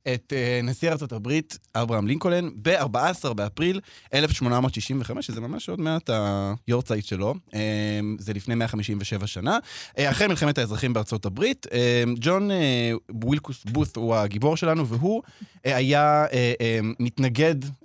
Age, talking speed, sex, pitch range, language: 20-39, 105 wpm, male, 110-145 Hz, Hebrew